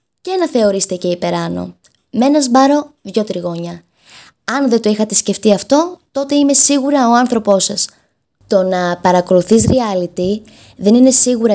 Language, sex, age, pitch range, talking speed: Greek, female, 20-39, 185-250 Hz, 150 wpm